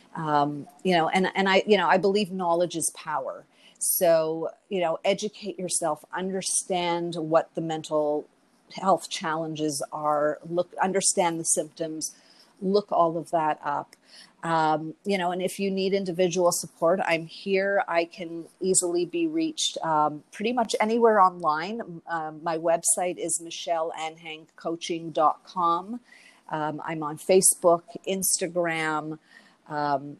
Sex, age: female, 50-69